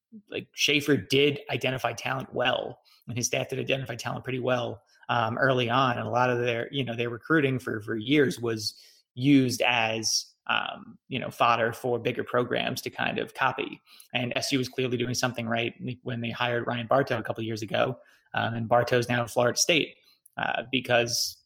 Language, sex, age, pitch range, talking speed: English, male, 30-49, 115-130 Hz, 195 wpm